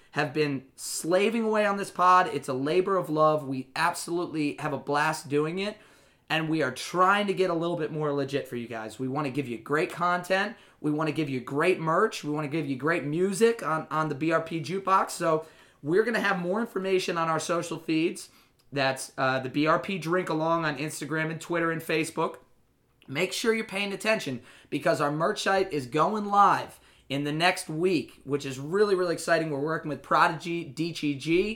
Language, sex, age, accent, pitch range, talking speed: English, male, 30-49, American, 145-175 Hz, 205 wpm